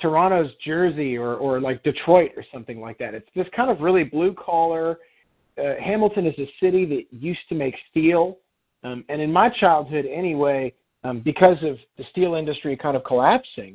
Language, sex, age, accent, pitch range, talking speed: English, male, 40-59, American, 130-180 Hz, 185 wpm